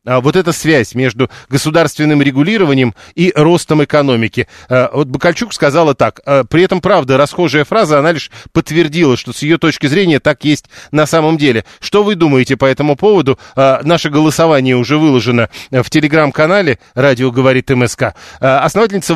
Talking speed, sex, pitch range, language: 145 wpm, male, 130-170 Hz, Russian